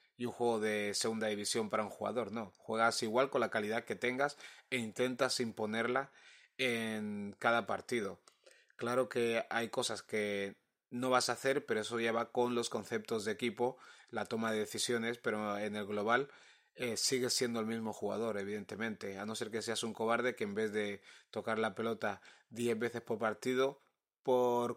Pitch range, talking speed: 110-125 Hz, 180 wpm